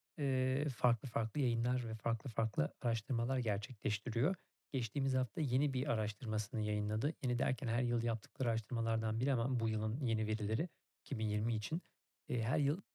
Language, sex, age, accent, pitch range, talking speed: Turkish, male, 40-59, native, 115-135 Hz, 140 wpm